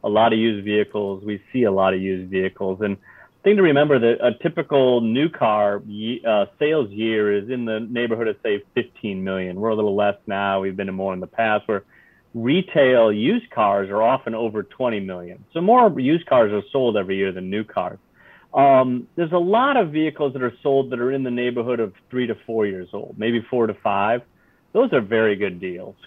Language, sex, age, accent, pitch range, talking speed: English, male, 40-59, American, 105-130 Hz, 215 wpm